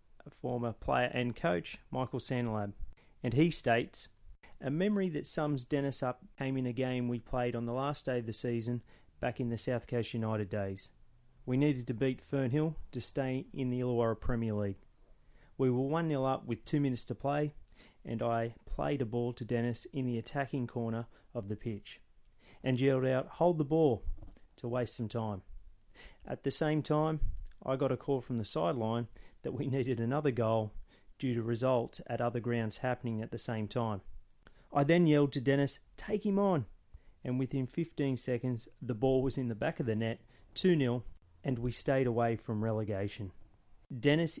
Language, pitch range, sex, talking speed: English, 115-135 Hz, male, 185 wpm